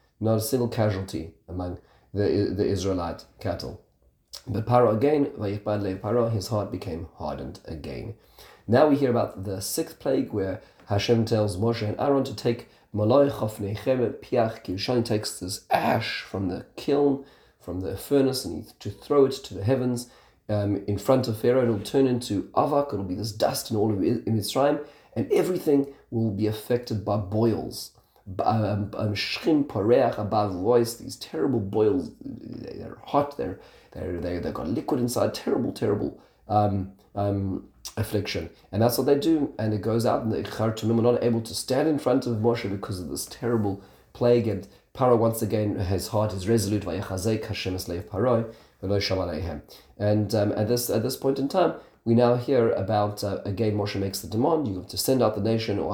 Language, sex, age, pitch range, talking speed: English, male, 40-59, 100-120 Hz, 170 wpm